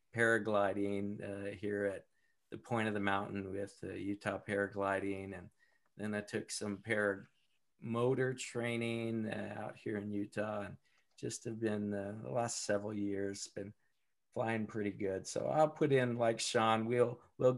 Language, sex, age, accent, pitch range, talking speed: English, male, 50-69, American, 105-135 Hz, 160 wpm